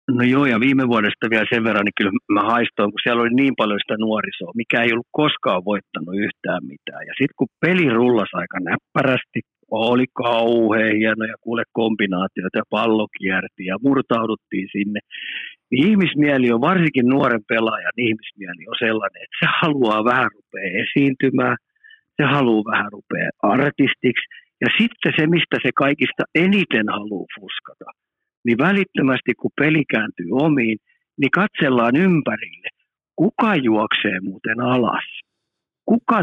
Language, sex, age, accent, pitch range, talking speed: Finnish, male, 50-69, native, 110-145 Hz, 145 wpm